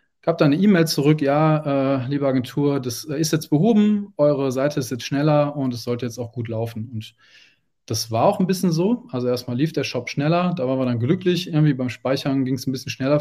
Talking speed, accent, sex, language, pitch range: 240 wpm, German, male, German, 130-155 Hz